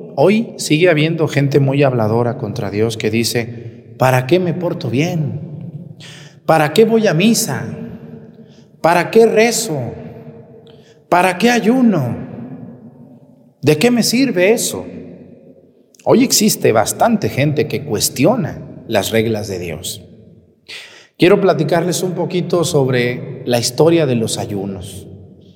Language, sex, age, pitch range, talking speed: Spanish, male, 40-59, 125-180 Hz, 120 wpm